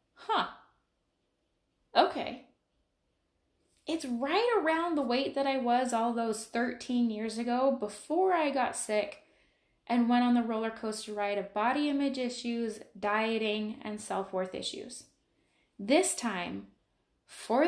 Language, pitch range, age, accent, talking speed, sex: English, 210-270 Hz, 10-29, American, 125 wpm, female